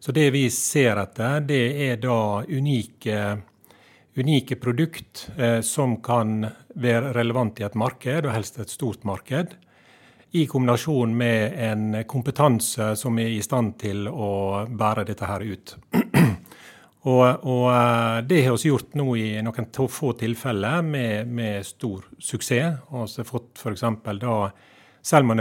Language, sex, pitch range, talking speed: English, male, 110-130 Hz, 150 wpm